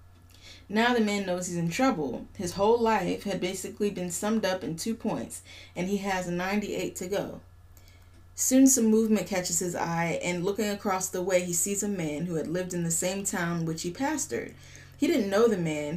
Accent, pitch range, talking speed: American, 155-215 Hz, 205 wpm